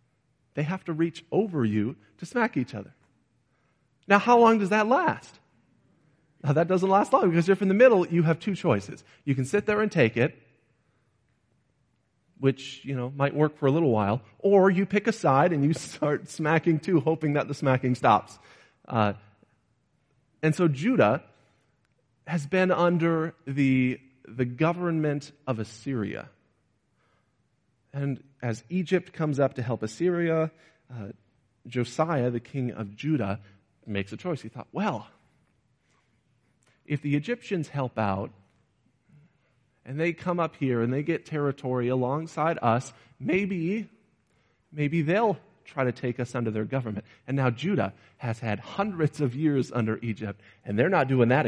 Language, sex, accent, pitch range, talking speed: English, male, American, 120-165 Hz, 155 wpm